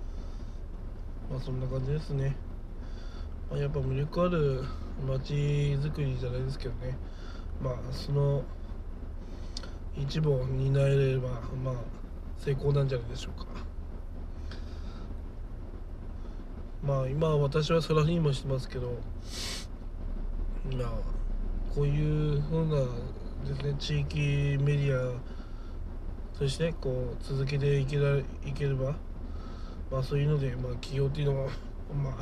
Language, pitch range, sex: Japanese, 85-140 Hz, male